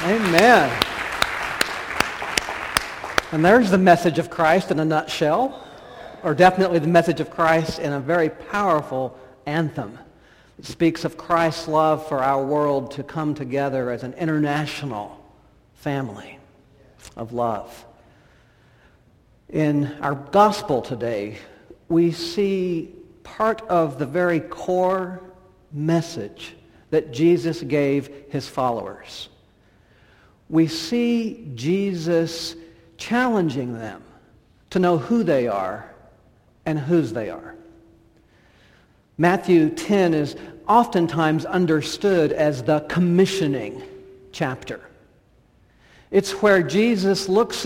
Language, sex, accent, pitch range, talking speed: English, male, American, 140-190 Hz, 105 wpm